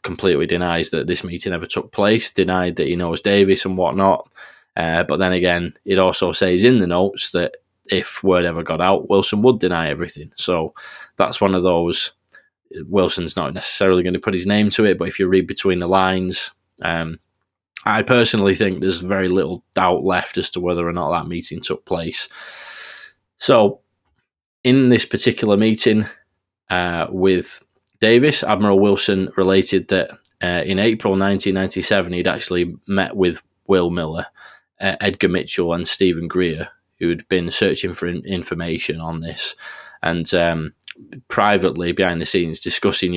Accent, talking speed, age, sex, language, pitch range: British, 165 wpm, 20-39, male, English, 85-95 Hz